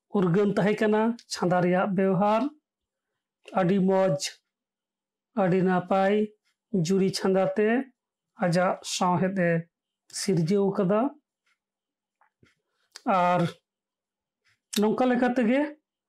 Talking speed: 40 wpm